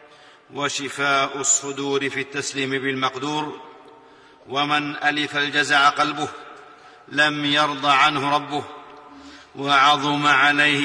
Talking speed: 85 wpm